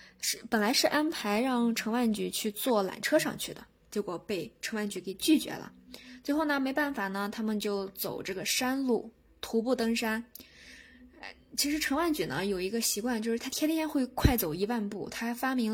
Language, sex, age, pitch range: Chinese, female, 10-29, 205-270 Hz